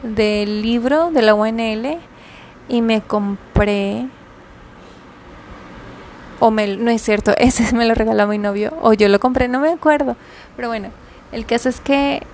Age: 20-39